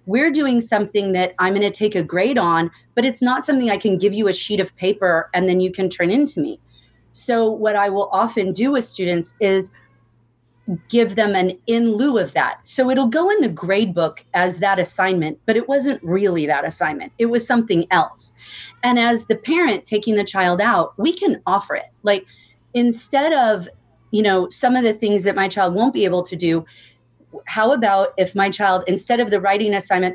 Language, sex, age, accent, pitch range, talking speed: English, female, 30-49, American, 180-225 Hz, 205 wpm